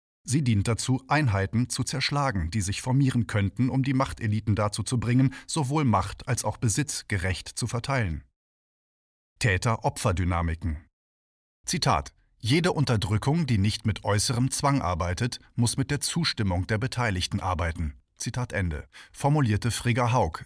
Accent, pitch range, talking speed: German, 95-130 Hz, 135 wpm